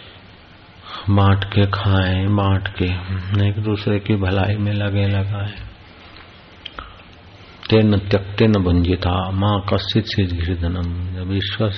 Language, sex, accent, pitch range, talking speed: Hindi, male, native, 95-110 Hz, 115 wpm